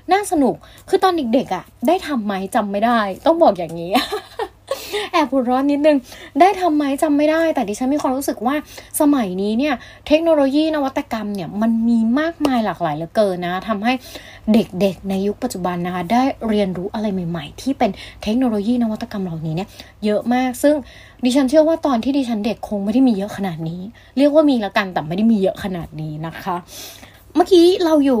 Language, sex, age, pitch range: English, female, 20-39, 190-275 Hz